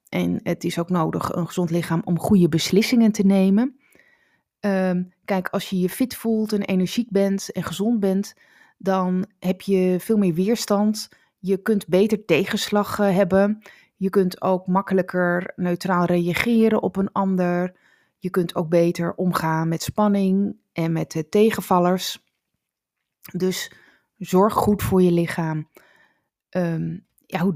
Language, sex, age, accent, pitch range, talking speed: Dutch, female, 30-49, Dutch, 175-210 Hz, 135 wpm